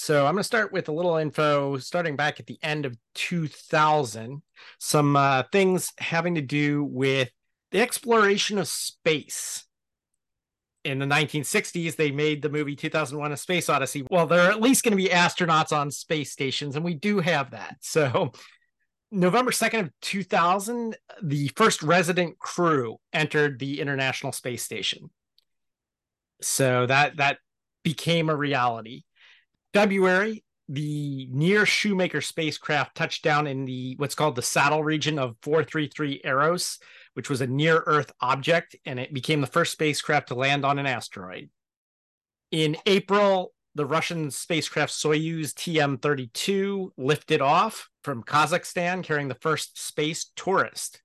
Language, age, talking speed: English, 30-49, 145 wpm